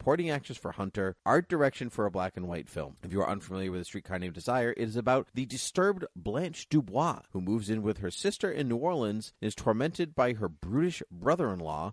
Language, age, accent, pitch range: English, 30-49, American, 90-120 Hz